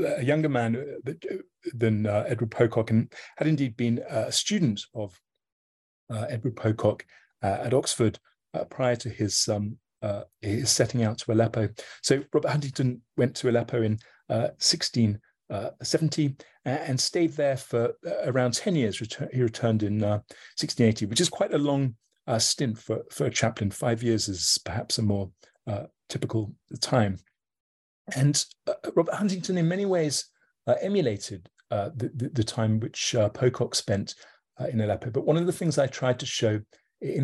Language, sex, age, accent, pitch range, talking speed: English, male, 30-49, British, 110-140 Hz, 170 wpm